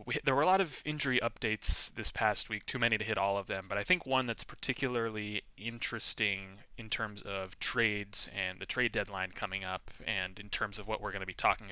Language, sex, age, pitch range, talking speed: English, male, 20-39, 100-115 Hz, 225 wpm